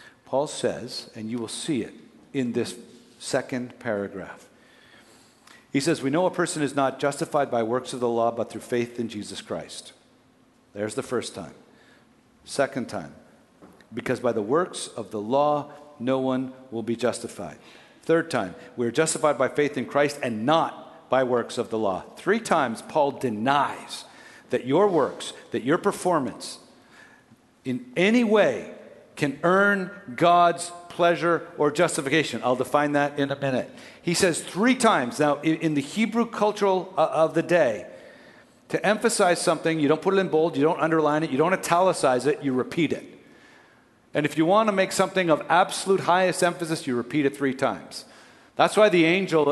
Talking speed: 170 wpm